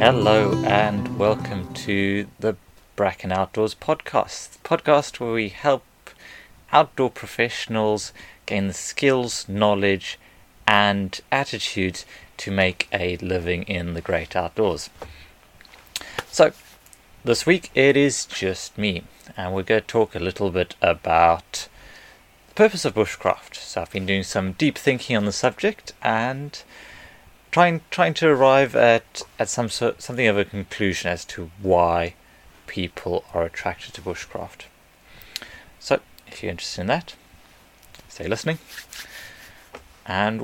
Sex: male